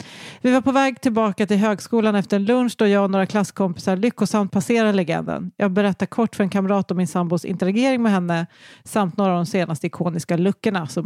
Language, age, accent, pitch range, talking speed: English, 40-59, Swedish, 175-215 Hz, 200 wpm